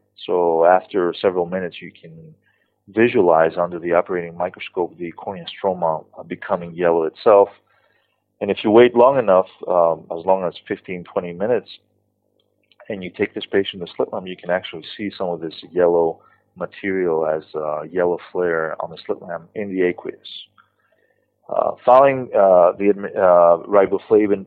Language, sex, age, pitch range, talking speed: English, male, 30-49, 85-100 Hz, 155 wpm